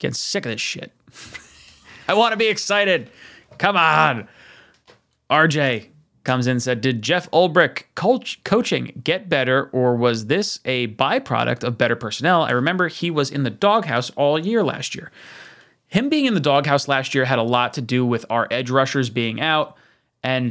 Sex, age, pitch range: male, 20-39, 120-140 Hz